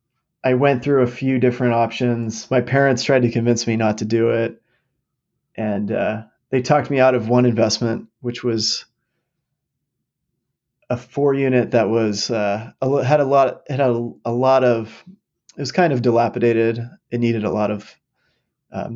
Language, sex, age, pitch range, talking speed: English, male, 30-49, 115-130 Hz, 160 wpm